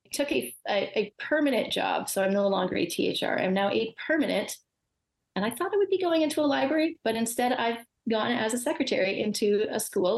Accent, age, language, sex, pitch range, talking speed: American, 30-49, English, female, 190-245 Hz, 210 wpm